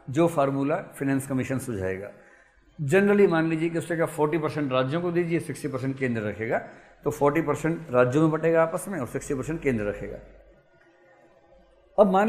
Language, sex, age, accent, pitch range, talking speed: Hindi, male, 50-69, native, 125-180 Hz, 170 wpm